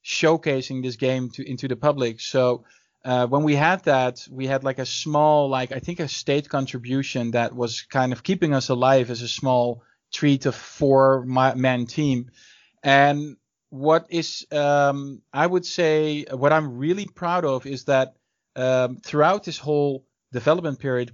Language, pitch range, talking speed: English, 130-155 Hz, 170 wpm